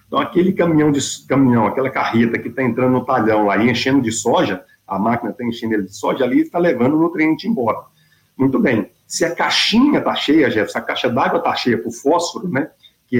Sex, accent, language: male, Brazilian, Portuguese